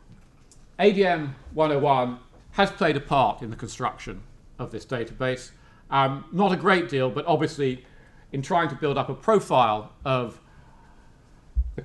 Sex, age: male, 40-59